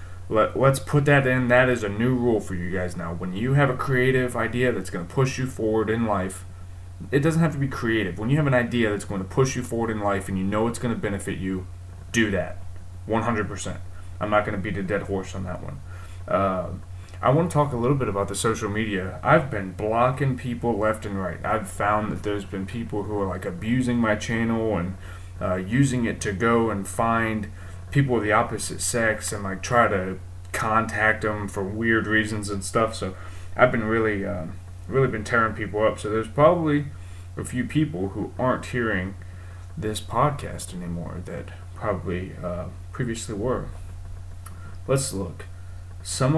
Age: 20-39